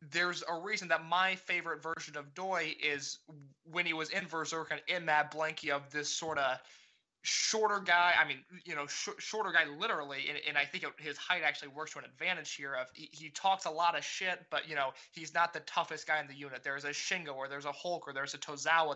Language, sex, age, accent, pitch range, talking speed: English, male, 20-39, American, 145-175 Hz, 240 wpm